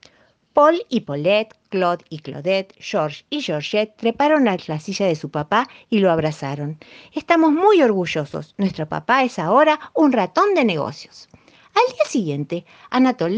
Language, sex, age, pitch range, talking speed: Spanish, female, 50-69, 160-250 Hz, 155 wpm